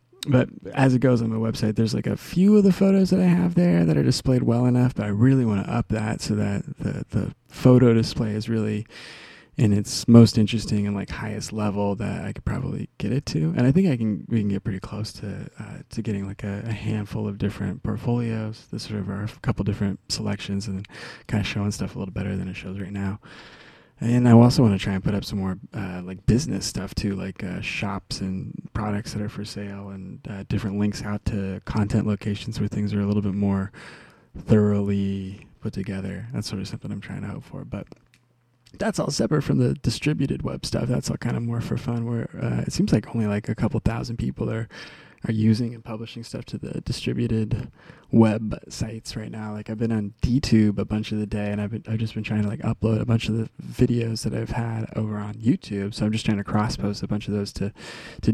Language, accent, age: English, American, 20-39